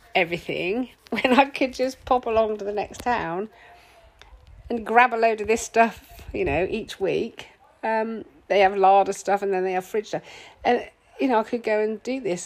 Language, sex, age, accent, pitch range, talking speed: English, female, 40-59, British, 195-265 Hz, 200 wpm